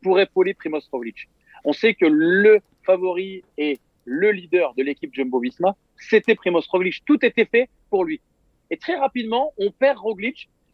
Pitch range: 155-230 Hz